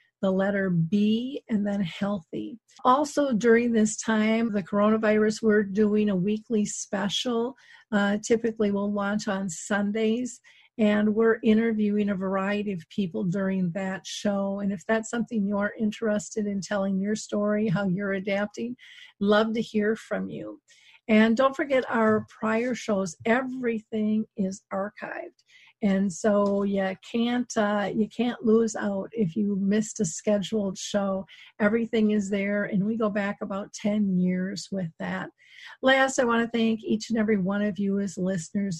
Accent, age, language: American, 50-69, English